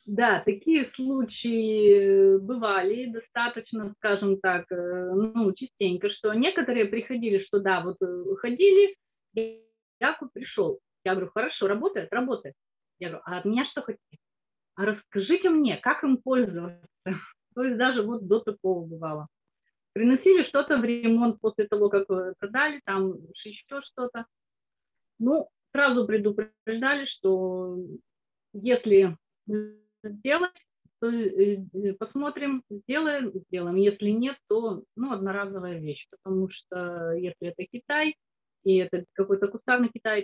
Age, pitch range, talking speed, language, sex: 30-49, 185-240 Hz, 120 wpm, Russian, female